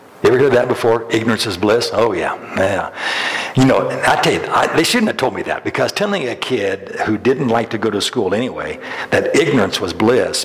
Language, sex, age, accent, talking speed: English, male, 60-79, American, 225 wpm